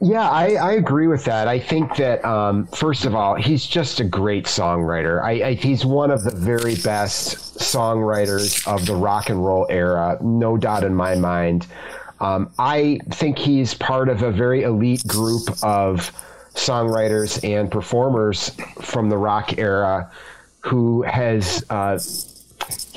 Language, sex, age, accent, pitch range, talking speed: English, male, 30-49, American, 100-130 Hz, 155 wpm